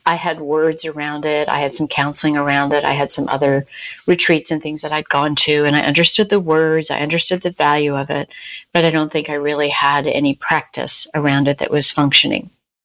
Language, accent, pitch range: English, American, 145-165 Hz